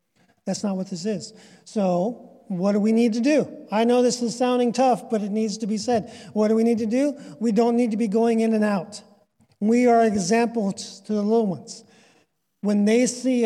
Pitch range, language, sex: 195-240 Hz, English, male